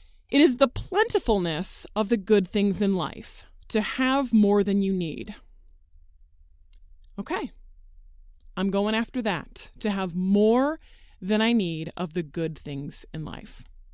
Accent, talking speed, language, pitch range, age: American, 140 wpm, English, 180-250 Hz, 20-39